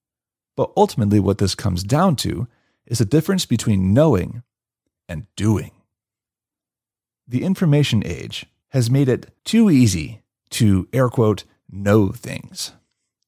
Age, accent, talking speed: 30-49, American, 120 wpm